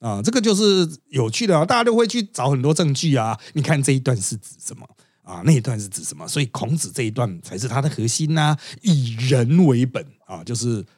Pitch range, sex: 115-155 Hz, male